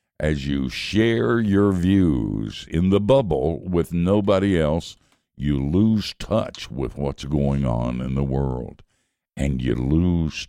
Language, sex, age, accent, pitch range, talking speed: English, male, 60-79, American, 70-95 Hz, 135 wpm